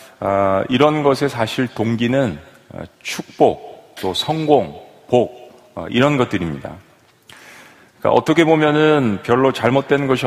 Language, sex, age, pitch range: Korean, male, 40-59, 110-145 Hz